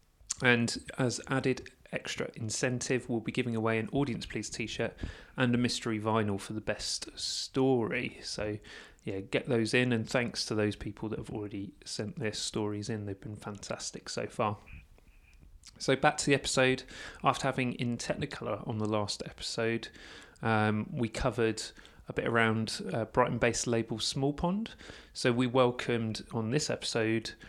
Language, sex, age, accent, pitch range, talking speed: English, male, 30-49, British, 105-125 Hz, 160 wpm